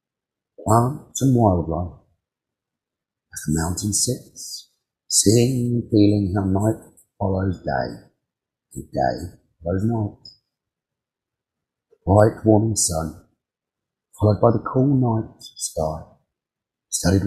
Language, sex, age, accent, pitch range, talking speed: English, male, 50-69, British, 95-115 Hz, 105 wpm